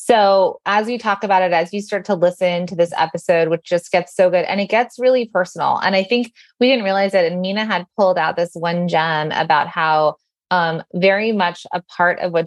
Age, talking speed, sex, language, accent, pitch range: 20-39, 230 wpm, female, English, American, 165-205 Hz